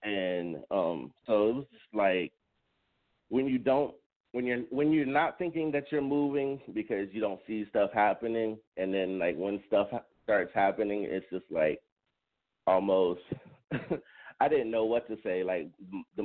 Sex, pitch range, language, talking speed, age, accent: male, 90-110 Hz, English, 160 wpm, 30-49, American